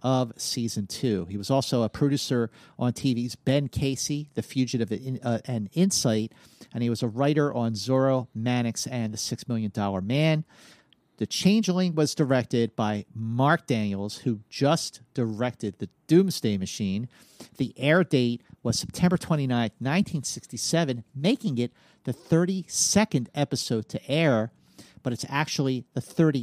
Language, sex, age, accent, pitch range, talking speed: English, male, 40-59, American, 115-155 Hz, 145 wpm